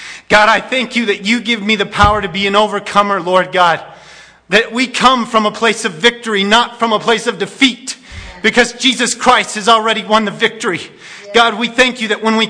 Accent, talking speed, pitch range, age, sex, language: American, 215 wpm, 195-225 Hz, 40-59, male, English